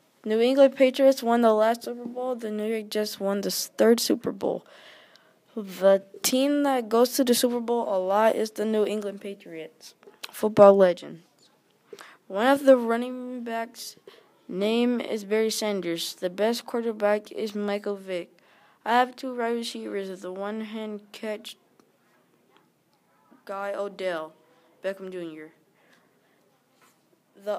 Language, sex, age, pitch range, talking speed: English, female, 20-39, 195-230 Hz, 135 wpm